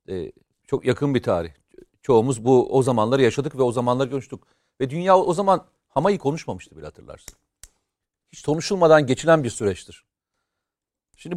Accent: native